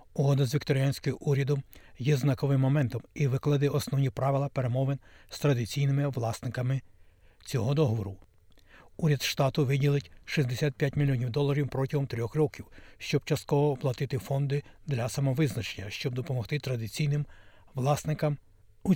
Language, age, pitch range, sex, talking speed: Ukrainian, 60-79, 120-145 Hz, male, 115 wpm